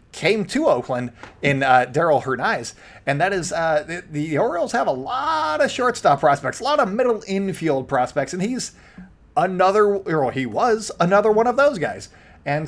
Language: English